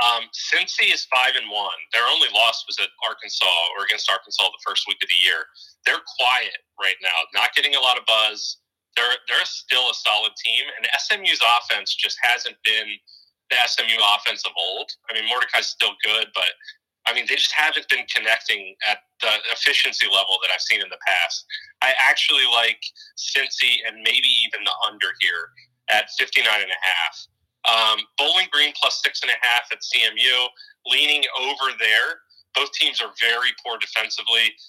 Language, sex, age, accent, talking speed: English, male, 30-49, American, 185 wpm